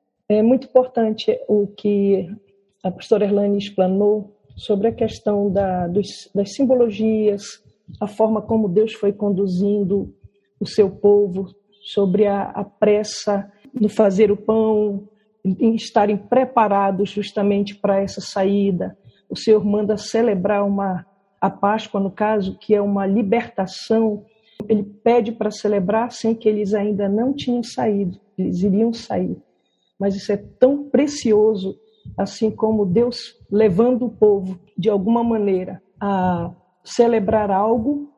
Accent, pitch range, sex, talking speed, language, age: Brazilian, 200-220 Hz, female, 130 wpm, Portuguese, 50-69